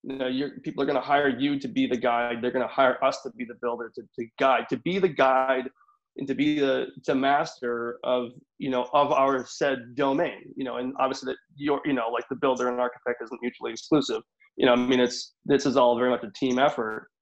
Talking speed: 245 wpm